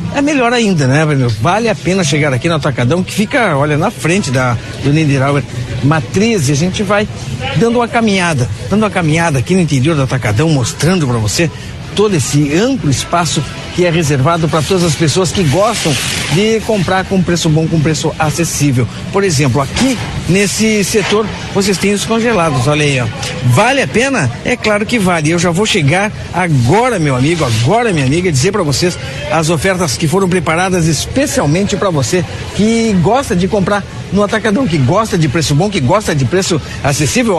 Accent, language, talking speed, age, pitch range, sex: Brazilian, Portuguese, 185 wpm, 60-79, 145-205 Hz, male